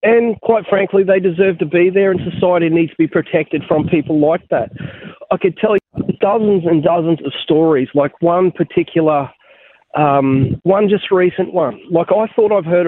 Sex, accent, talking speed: male, Australian, 185 wpm